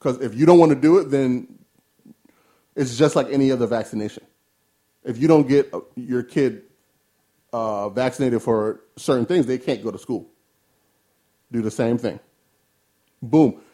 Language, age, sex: English, 30-49, male